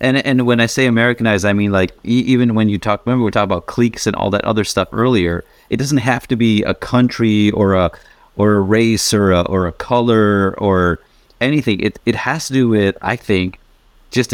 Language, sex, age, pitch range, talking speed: English, male, 30-49, 100-125 Hz, 220 wpm